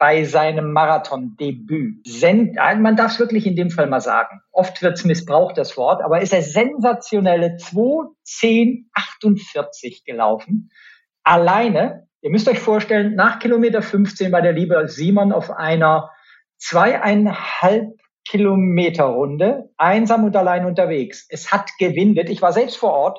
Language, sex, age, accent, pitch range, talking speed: German, male, 50-69, German, 165-215 Hz, 135 wpm